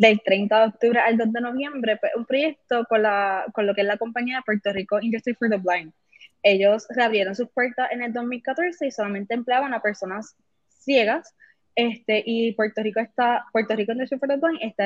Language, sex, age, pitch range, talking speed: Spanish, female, 10-29, 210-245 Hz, 190 wpm